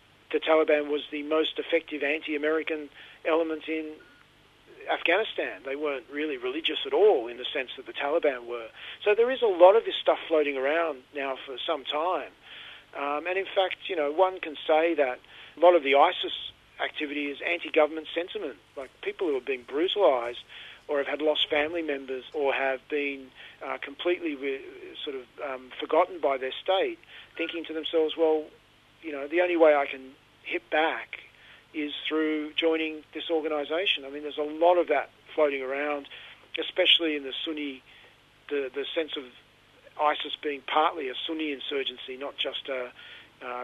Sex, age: male, 40-59